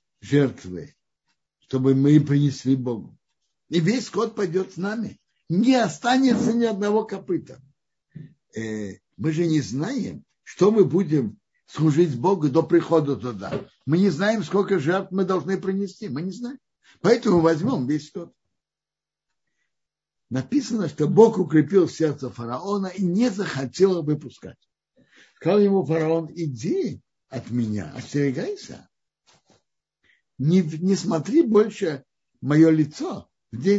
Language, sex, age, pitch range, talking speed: Russian, male, 60-79, 135-195 Hz, 120 wpm